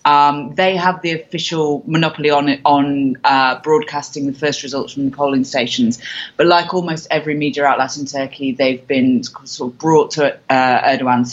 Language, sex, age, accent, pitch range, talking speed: English, female, 20-39, British, 135-160 Hz, 180 wpm